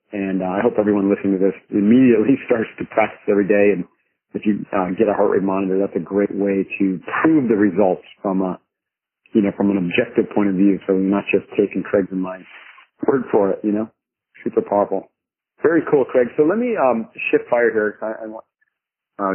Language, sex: English, male